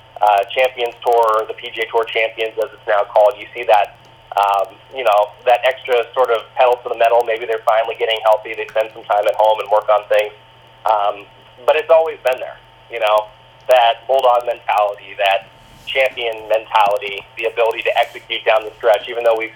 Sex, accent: male, American